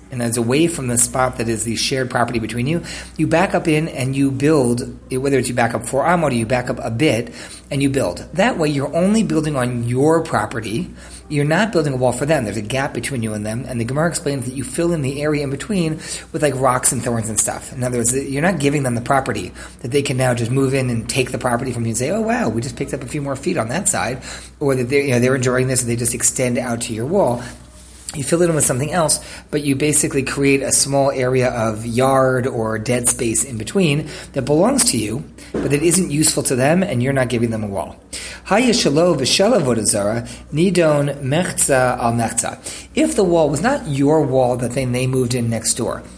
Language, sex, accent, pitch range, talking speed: English, male, American, 120-145 Hz, 235 wpm